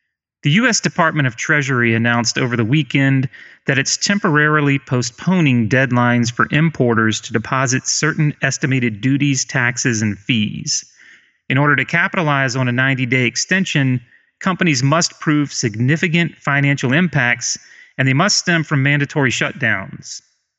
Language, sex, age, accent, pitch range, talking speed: English, male, 30-49, American, 120-155 Hz, 130 wpm